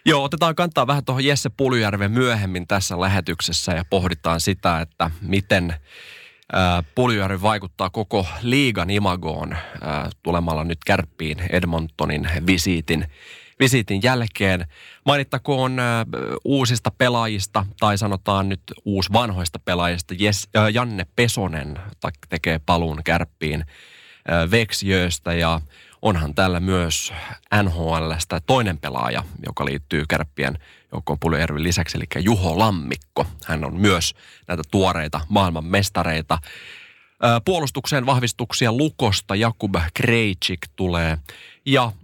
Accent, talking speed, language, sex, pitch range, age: native, 115 wpm, Finnish, male, 85-115 Hz, 20-39